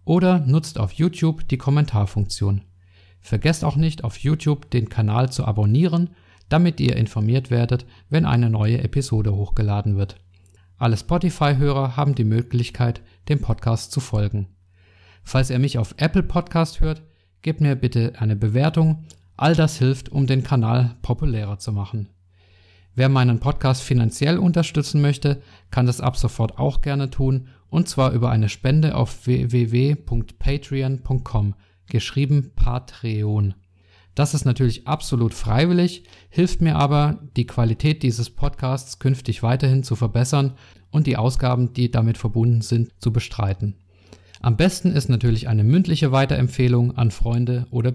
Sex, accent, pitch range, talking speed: male, German, 110-140 Hz, 140 wpm